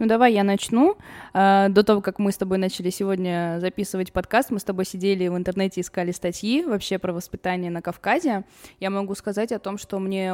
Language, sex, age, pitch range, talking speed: Russian, female, 20-39, 175-195 Hz, 195 wpm